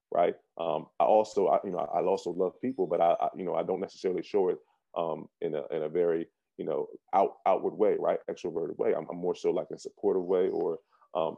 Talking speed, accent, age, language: 235 wpm, American, 20-39, English